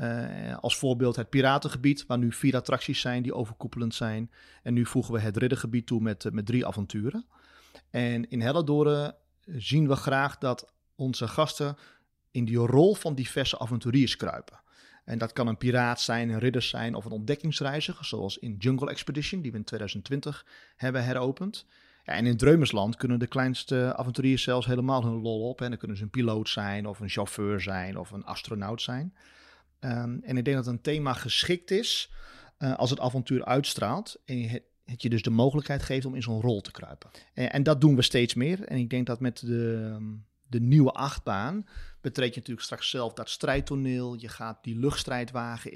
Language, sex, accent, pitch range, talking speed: Dutch, male, Dutch, 115-135 Hz, 190 wpm